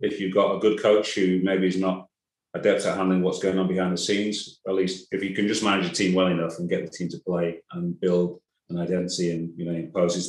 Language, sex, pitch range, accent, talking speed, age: English, male, 90-95 Hz, British, 260 wpm, 30-49